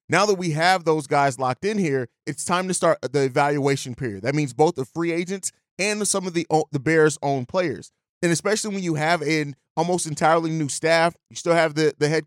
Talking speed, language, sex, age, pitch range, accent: 225 wpm, English, male, 30-49, 150-185 Hz, American